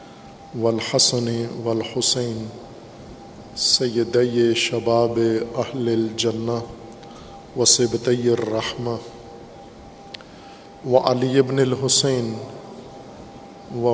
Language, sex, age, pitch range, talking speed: Urdu, male, 50-69, 115-125 Hz, 80 wpm